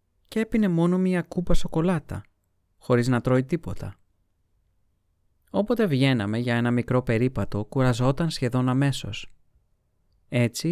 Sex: male